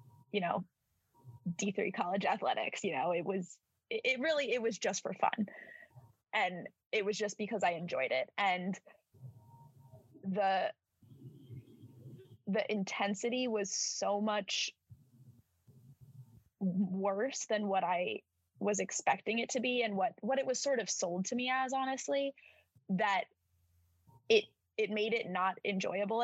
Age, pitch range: 20-39, 130-215 Hz